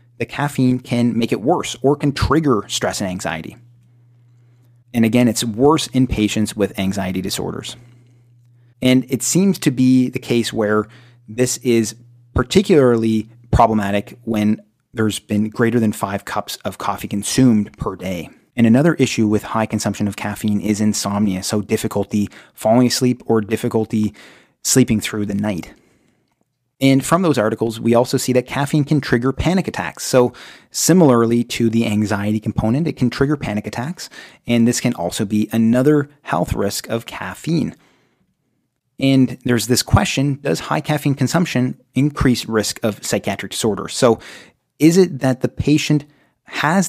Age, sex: 30-49, male